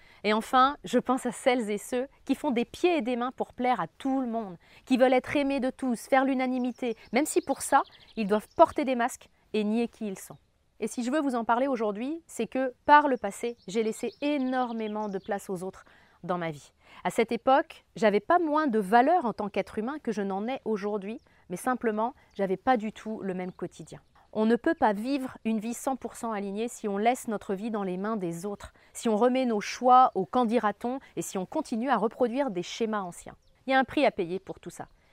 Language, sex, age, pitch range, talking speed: French, female, 30-49, 205-260 Hz, 235 wpm